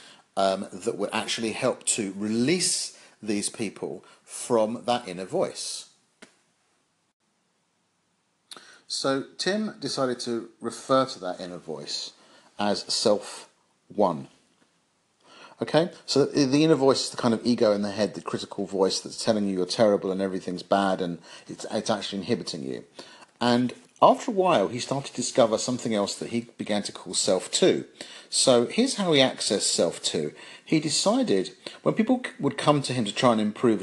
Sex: male